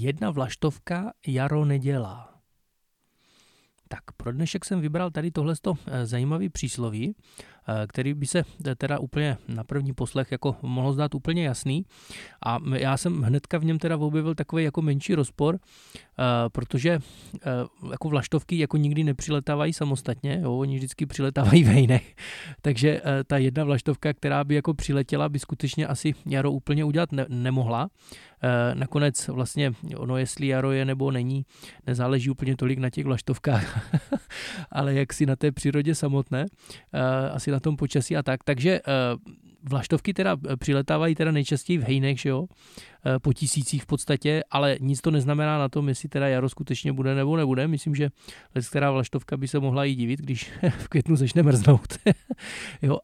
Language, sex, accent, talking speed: Czech, male, native, 150 wpm